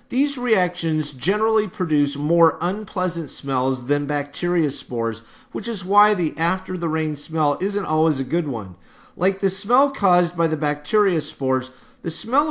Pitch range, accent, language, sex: 145-190 Hz, American, English, male